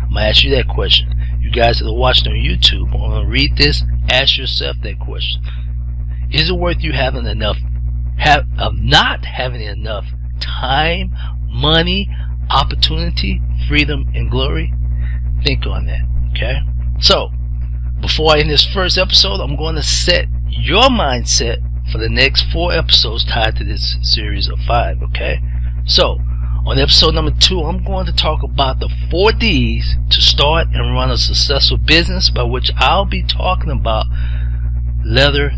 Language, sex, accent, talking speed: English, male, American, 155 wpm